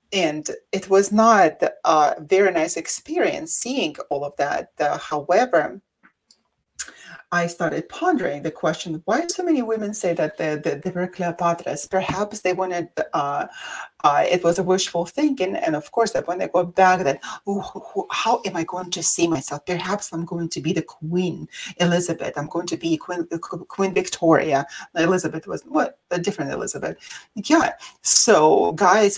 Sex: female